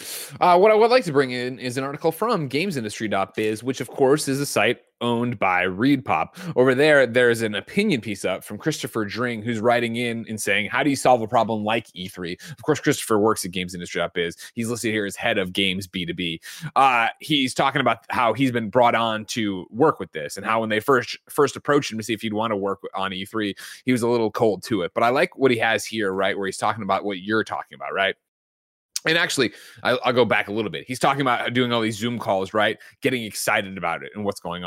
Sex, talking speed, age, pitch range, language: male, 235 wpm, 30-49, 110-145 Hz, English